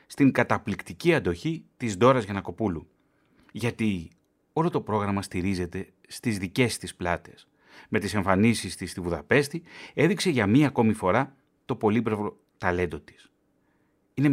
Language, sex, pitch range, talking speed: Greek, male, 95-140 Hz, 130 wpm